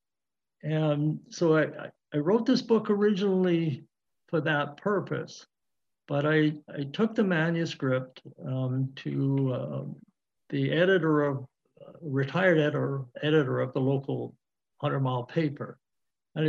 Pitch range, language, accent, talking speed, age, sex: 130-165 Hz, English, American, 125 wpm, 60-79, male